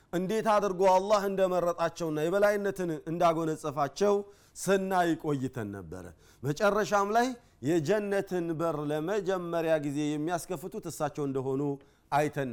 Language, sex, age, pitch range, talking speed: Amharic, male, 40-59, 140-190 Hz, 90 wpm